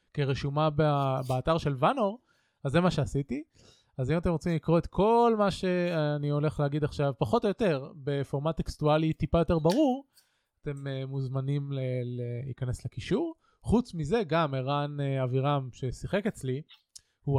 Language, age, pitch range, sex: Hebrew, 20-39, 135-165 Hz, male